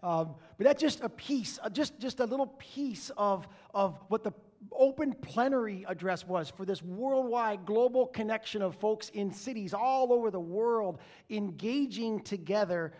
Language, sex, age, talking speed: English, male, 40-59, 155 wpm